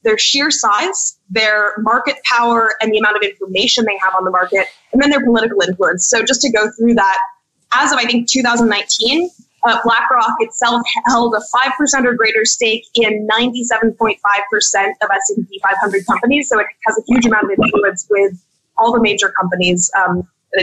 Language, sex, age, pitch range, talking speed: English, female, 20-39, 210-250 Hz, 180 wpm